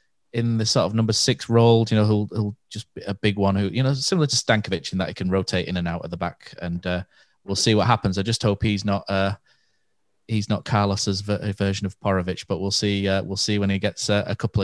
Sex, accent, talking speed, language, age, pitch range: male, British, 260 wpm, English, 20-39, 95-115 Hz